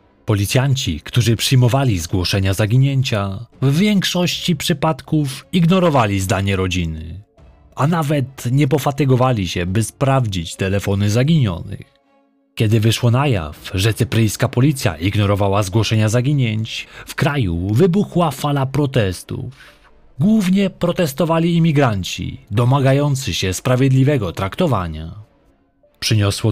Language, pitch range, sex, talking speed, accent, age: Polish, 100-145 Hz, male, 95 wpm, native, 30-49